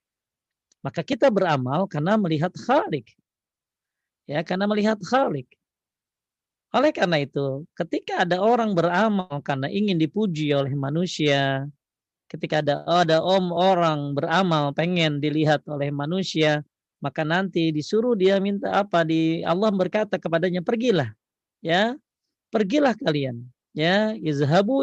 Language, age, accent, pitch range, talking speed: Indonesian, 40-59, native, 140-195 Hz, 115 wpm